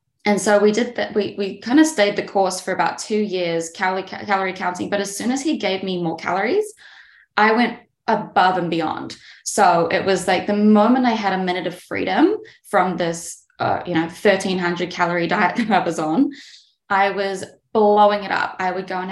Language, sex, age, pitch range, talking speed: English, female, 20-39, 180-215 Hz, 205 wpm